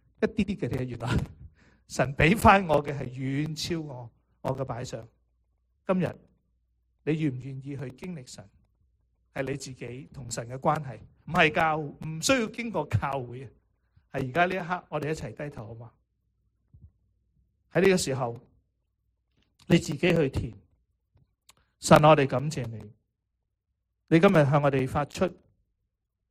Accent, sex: Chinese, male